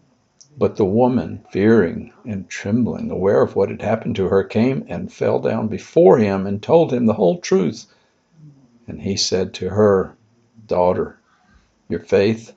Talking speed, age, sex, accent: 160 wpm, 60-79, male, American